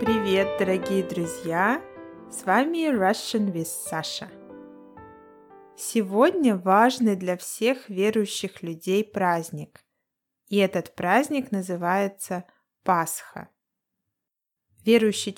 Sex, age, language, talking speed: female, 20-39, Russian, 80 wpm